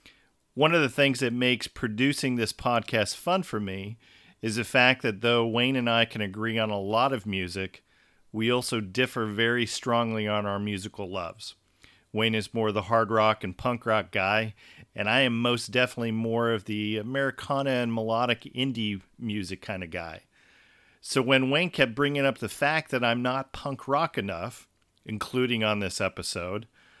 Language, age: English, 40-59